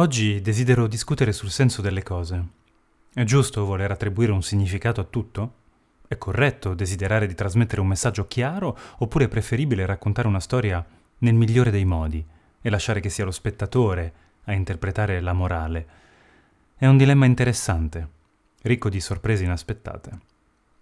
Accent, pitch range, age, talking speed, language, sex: native, 90-120 Hz, 30-49, 145 wpm, Italian, male